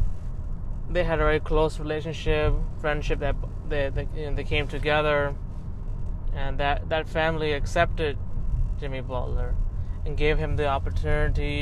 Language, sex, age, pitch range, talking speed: English, male, 20-39, 90-140 Hz, 125 wpm